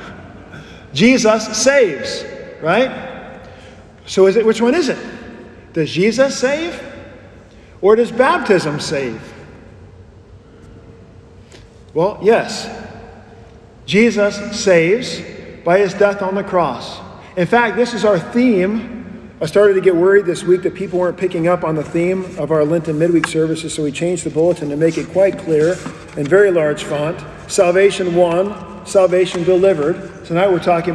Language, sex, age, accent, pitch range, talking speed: English, male, 40-59, American, 160-205 Hz, 145 wpm